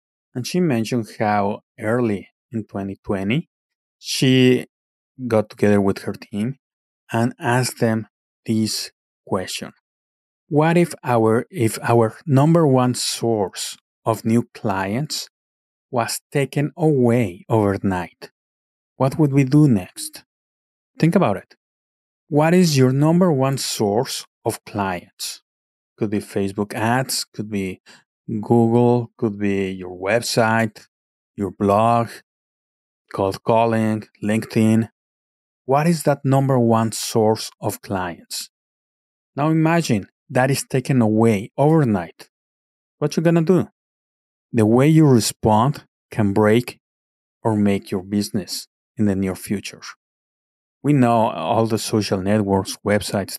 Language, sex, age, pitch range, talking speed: English, male, 30-49, 100-130 Hz, 120 wpm